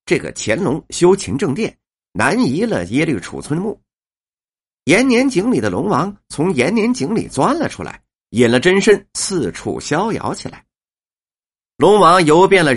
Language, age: Chinese, 50-69